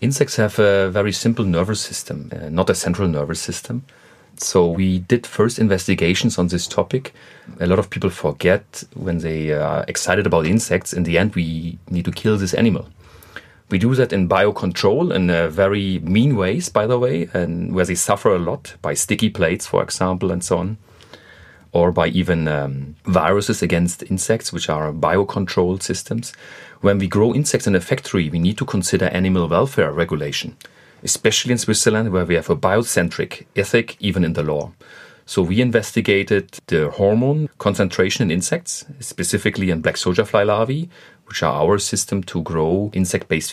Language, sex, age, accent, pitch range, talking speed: English, male, 30-49, German, 90-110 Hz, 175 wpm